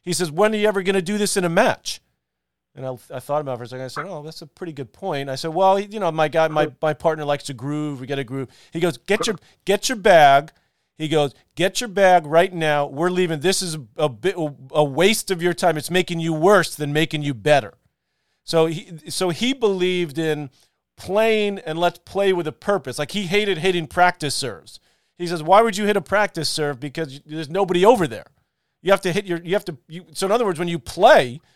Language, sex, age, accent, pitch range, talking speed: English, male, 40-59, American, 145-185 Hz, 245 wpm